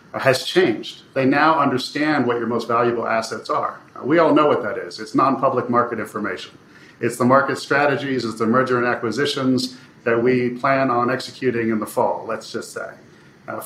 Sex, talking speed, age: male, 185 wpm, 40-59